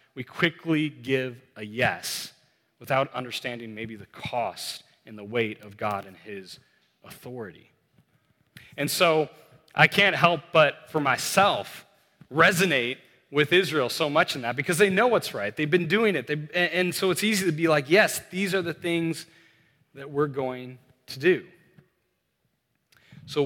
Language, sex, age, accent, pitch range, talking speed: English, male, 30-49, American, 115-160 Hz, 155 wpm